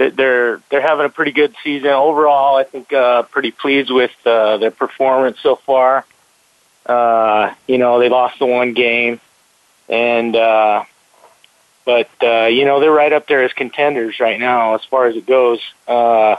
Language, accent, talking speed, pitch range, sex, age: English, American, 170 wpm, 120-135 Hz, male, 40-59